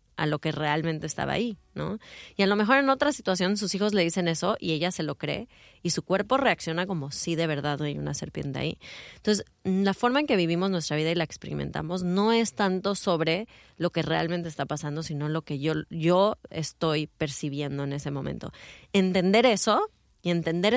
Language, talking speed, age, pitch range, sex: English, 205 wpm, 30-49, 155-190 Hz, female